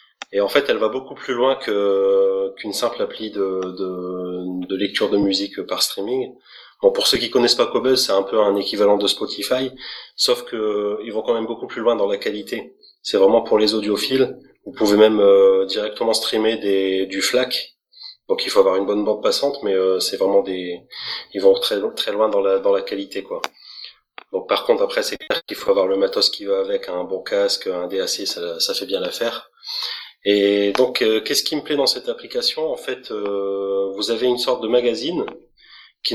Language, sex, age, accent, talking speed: French, male, 30-49, French, 210 wpm